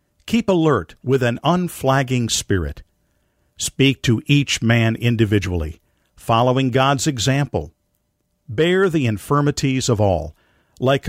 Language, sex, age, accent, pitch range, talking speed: English, male, 50-69, American, 105-145 Hz, 110 wpm